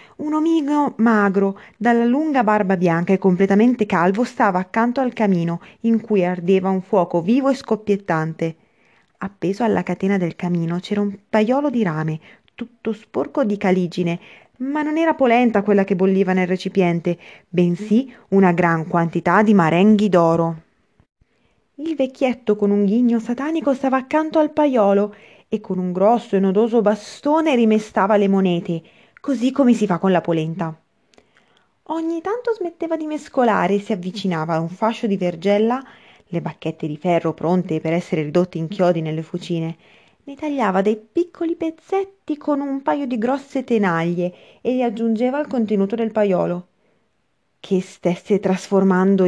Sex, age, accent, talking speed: female, 20-39, native, 150 wpm